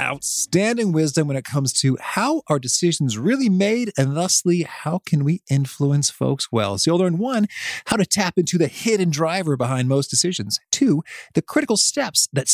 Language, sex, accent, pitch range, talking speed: English, male, American, 125-180 Hz, 180 wpm